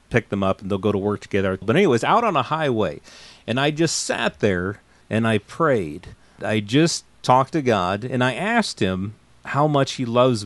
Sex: male